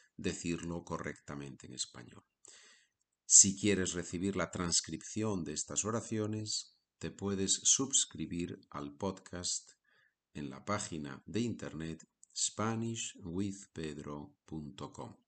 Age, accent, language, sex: 50-69, Spanish, Spanish, male